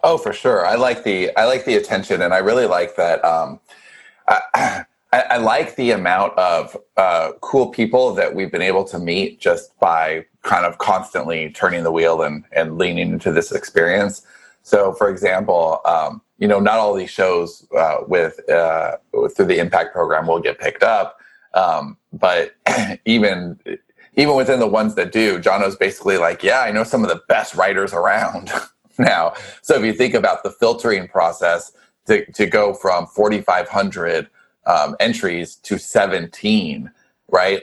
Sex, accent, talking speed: male, American, 175 wpm